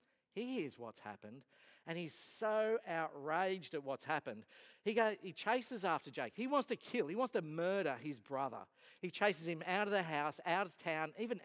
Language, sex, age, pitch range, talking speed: English, male, 50-69, 150-225 Hz, 195 wpm